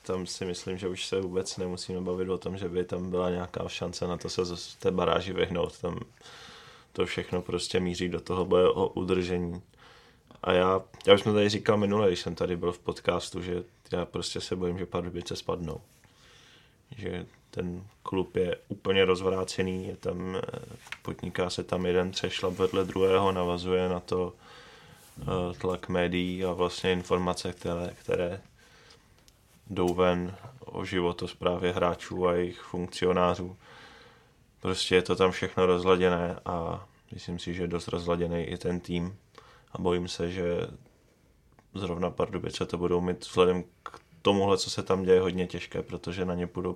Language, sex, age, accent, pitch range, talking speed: Czech, male, 20-39, native, 90-95 Hz, 160 wpm